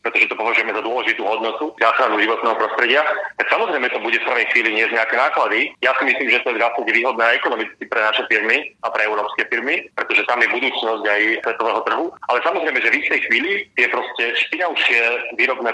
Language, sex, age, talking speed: Slovak, male, 40-59, 200 wpm